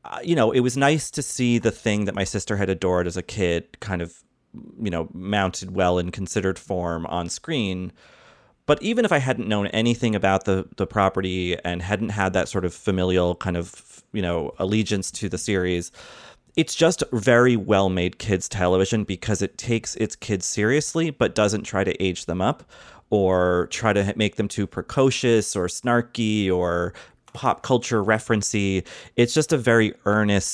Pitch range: 90-115 Hz